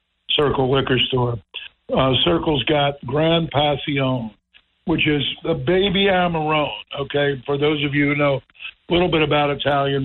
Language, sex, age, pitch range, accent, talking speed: English, male, 60-79, 135-160 Hz, American, 150 wpm